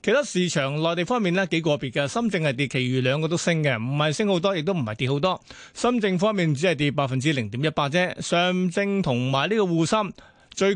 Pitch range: 145-185 Hz